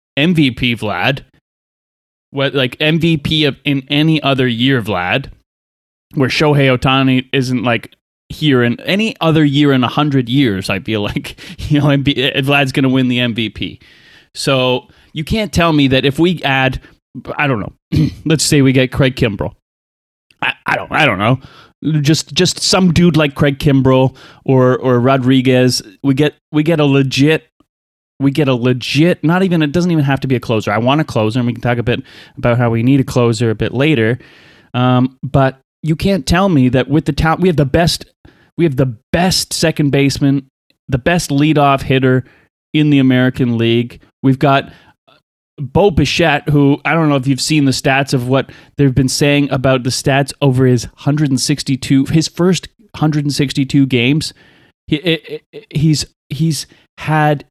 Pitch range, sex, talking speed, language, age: 125-150 Hz, male, 180 wpm, English, 30-49